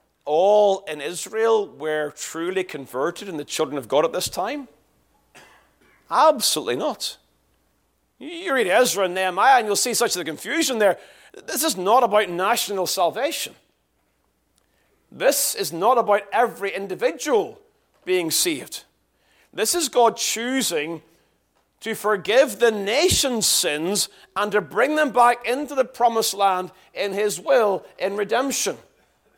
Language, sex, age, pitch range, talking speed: English, male, 40-59, 170-255 Hz, 135 wpm